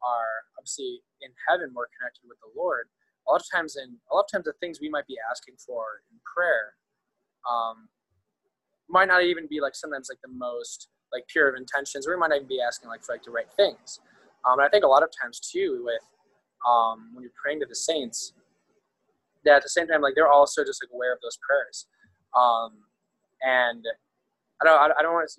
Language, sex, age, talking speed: English, male, 20-39, 215 wpm